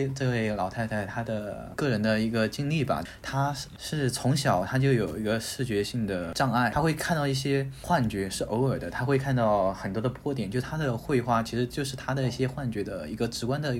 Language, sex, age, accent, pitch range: Chinese, male, 20-39, native, 105-130 Hz